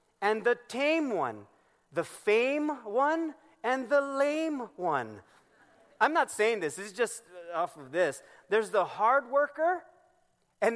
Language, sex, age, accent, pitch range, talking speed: English, male, 30-49, American, 175-255 Hz, 145 wpm